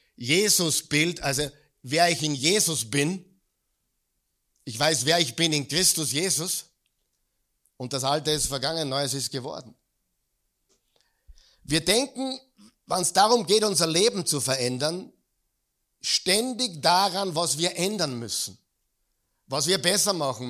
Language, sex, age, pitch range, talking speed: German, male, 50-69, 130-180 Hz, 130 wpm